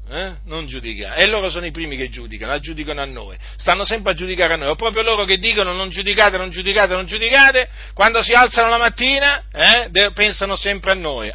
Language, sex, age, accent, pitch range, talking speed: Italian, male, 40-59, native, 160-225 Hz, 210 wpm